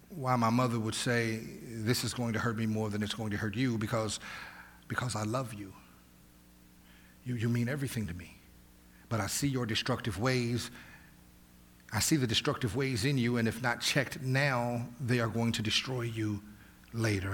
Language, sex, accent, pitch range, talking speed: English, male, American, 110-135 Hz, 185 wpm